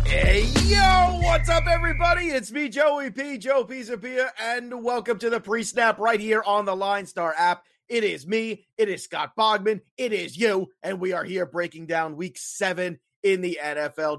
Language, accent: English, American